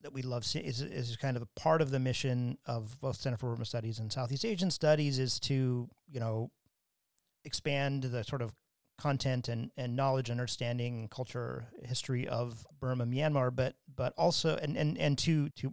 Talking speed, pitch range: 185 wpm, 120-135 Hz